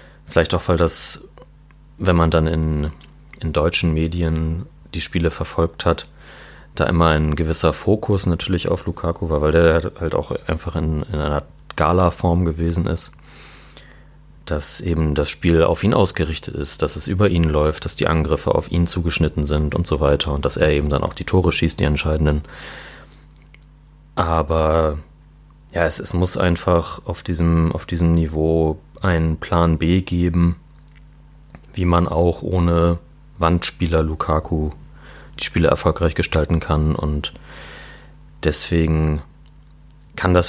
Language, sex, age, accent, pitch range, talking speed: German, male, 30-49, German, 80-90 Hz, 145 wpm